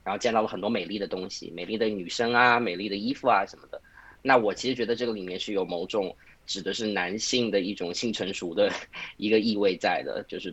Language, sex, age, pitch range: Chinese, male, 20-39, 105-140 Hz